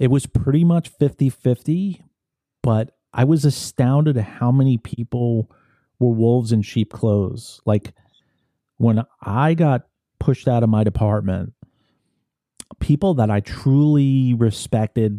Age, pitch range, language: 40-59, 100-130 Hz, English